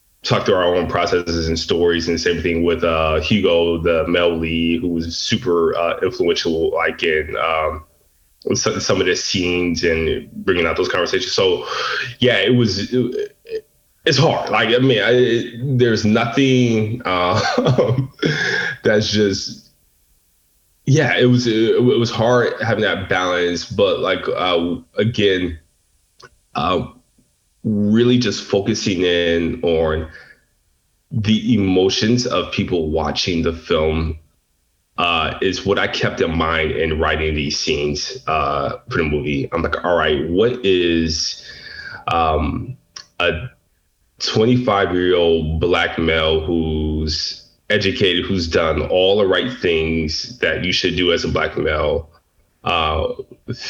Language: English